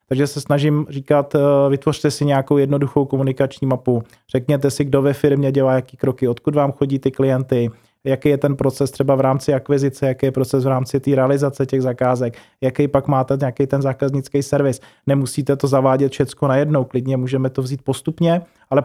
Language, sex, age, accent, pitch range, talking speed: Czech, male, 20-39, native, 130-145 Hz, 185 wpm